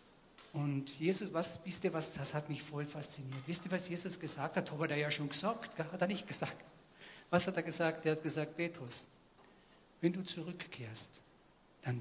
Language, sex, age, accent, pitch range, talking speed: German, male, 50-69, German, 140-165 Hz, 195 wpm